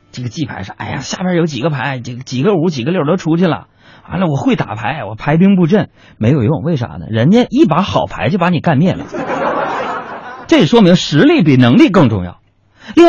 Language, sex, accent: Chinese, male, native